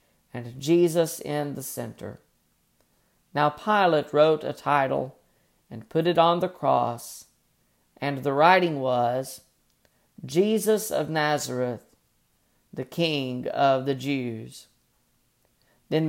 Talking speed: 110 wpm